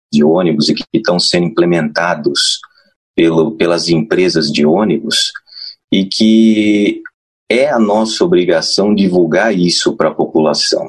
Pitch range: 80-115 Hz